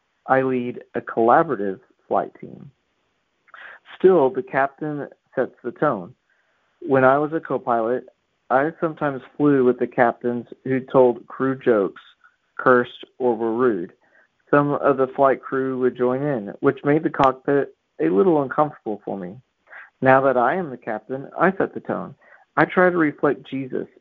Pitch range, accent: 120-140 Hz, American